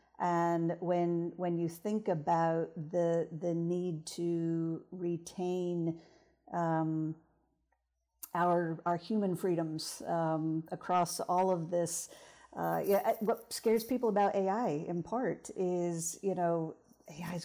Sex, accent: female, American